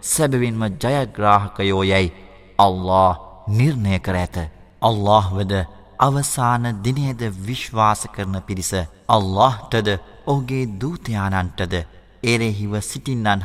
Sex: male